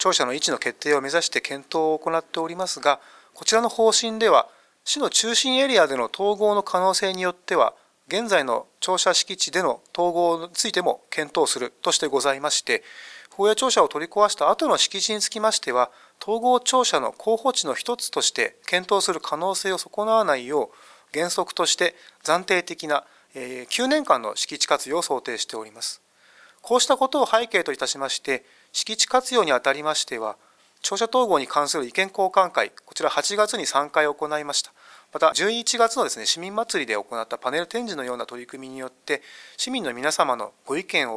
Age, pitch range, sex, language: 30-49, 150-220 Hz, male, Japanese